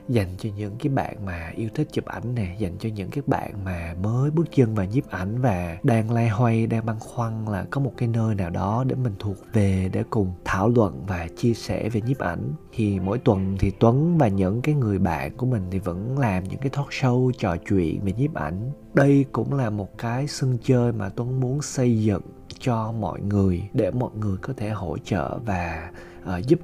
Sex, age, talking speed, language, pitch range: male, 20-39, 225 wpm, Vietnamese, 100-135 Hz